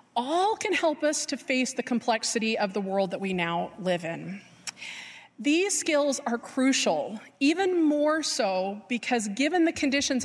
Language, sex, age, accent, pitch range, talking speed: English, female, 30-49, American, 190-280 Hz, 160 wpm